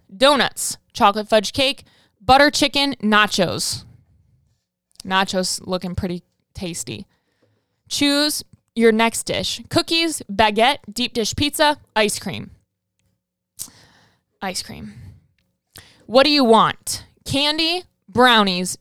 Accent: American